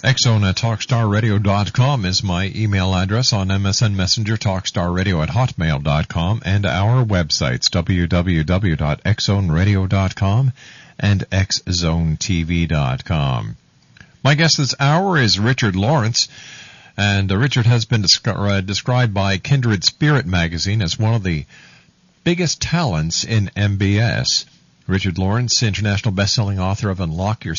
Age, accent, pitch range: 50-69, American, 95-130 Hz